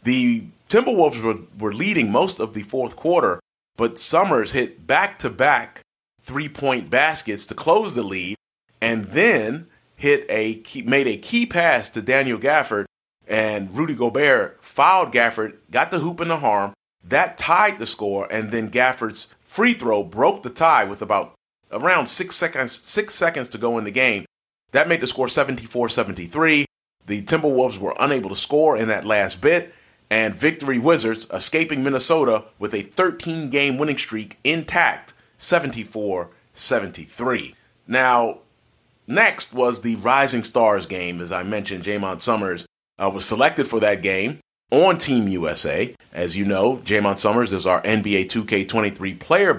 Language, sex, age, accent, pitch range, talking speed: English, male, 30-49, American, 105-145 Hz, 155 wpm